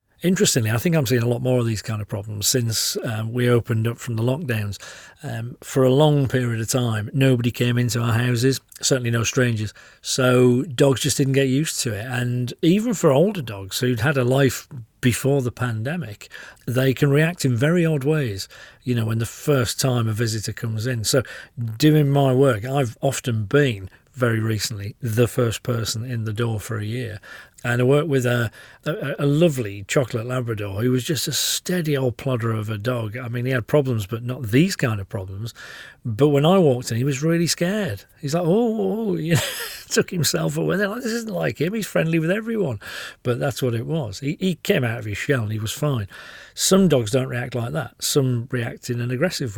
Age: 40-59